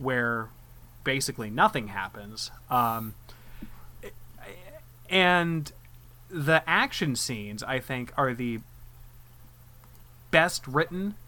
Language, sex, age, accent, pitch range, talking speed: English, male, 20-39, American, 120-145 Hz, 80 wpm